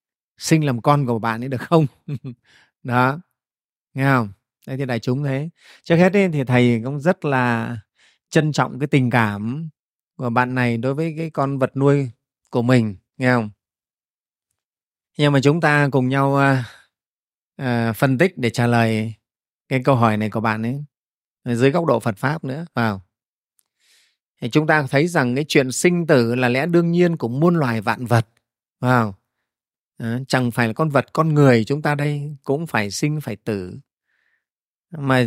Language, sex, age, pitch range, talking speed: Vietnamese, male, 20-39, 120-155 Hz, 175 wpm